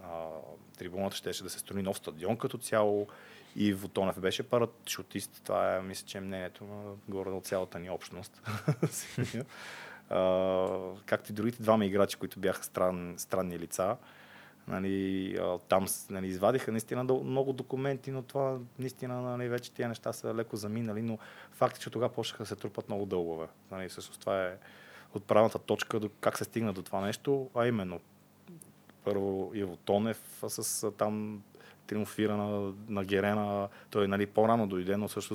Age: 30-49